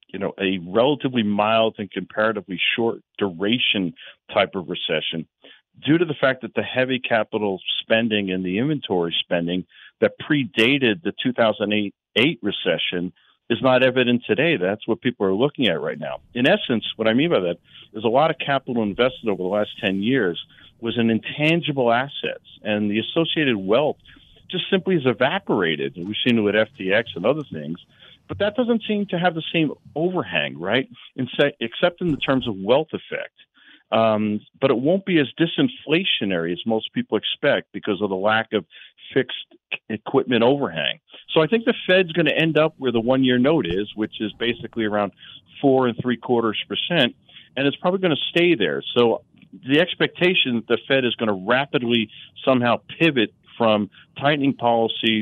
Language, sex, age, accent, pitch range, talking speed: English, male, 50-69, American, 105-145 Hz, 175 wpm